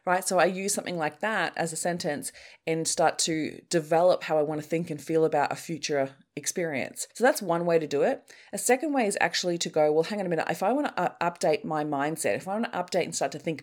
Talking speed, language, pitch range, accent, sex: 265 wpm, English, 150-185 Hz, Australian, female